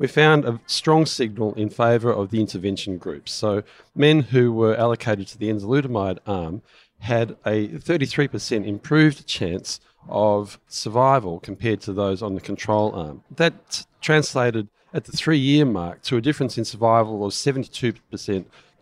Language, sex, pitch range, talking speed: English, male, 100-135 Hz, 150 wpm